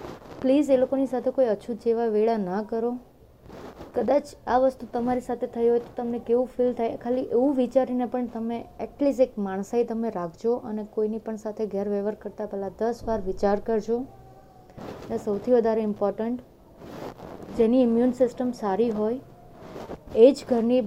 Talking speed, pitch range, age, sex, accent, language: 125 wpm, 210-245 Hz, 20-39, female, native, Gujarati